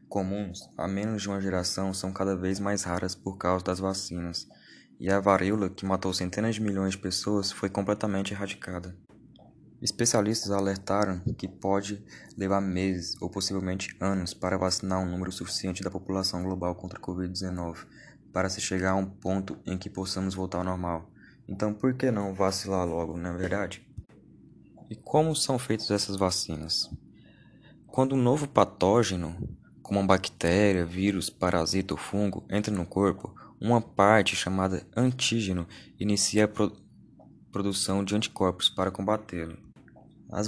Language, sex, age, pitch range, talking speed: Portuguese, male, 20-39, 95-105 Hz, 150 wpm